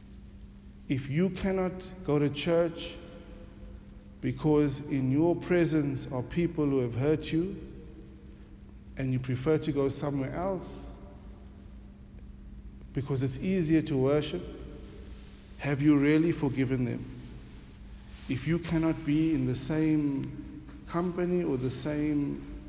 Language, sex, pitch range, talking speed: English, male, 100-155 Hz, 115 wpm